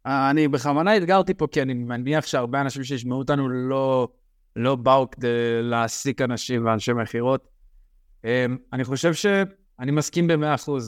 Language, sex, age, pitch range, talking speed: Hebrew, male, 20-39, 120-155 Hz, 140 wpm